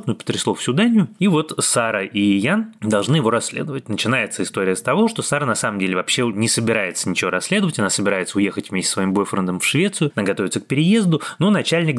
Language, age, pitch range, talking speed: Russian, 20-39, 100-130 Hz, 200 wpm